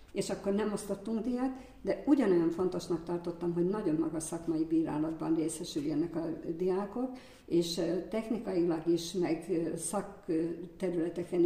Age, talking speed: 50-69, 115 wpm